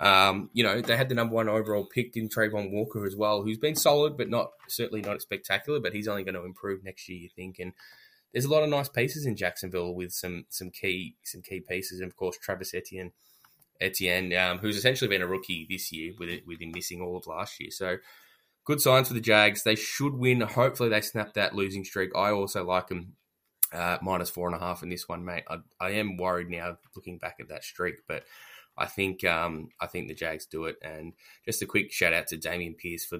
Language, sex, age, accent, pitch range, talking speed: English, male, 10-29, Australian, 85-105 Hz, 235 wpm